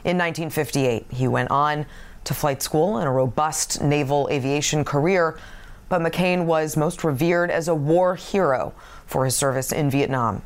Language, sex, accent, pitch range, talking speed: English, female, American, 140-185 Hz, 160 wpm